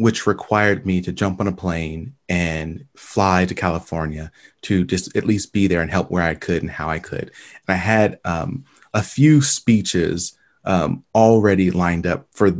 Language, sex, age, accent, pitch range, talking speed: English, male, 30-49, American, 90-110 Hz, 185 wpm